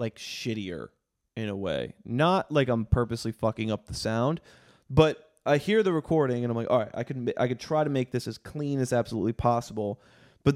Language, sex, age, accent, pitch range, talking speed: English, male, 20-39, American, 110-130 Hz, 210 wpm